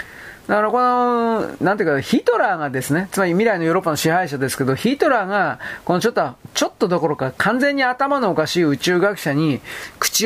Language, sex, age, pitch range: Japanese, male, 40-59, 160-235 Hz